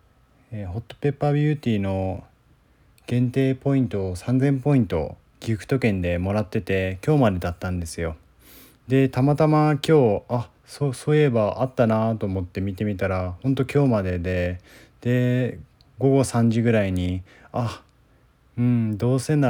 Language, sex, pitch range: Japanese, male, 95-135 Hz